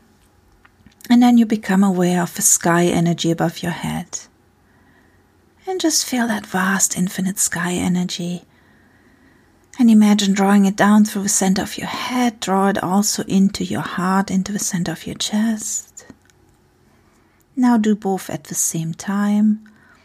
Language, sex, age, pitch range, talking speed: English, female, 40-59, 175-205 Hz, 150 wpm